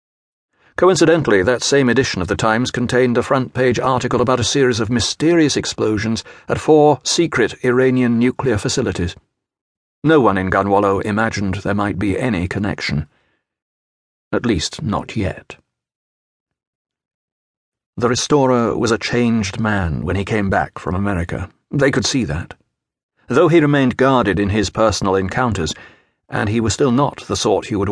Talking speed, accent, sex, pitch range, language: 150 wpm, British, male, 100-125 Hz, English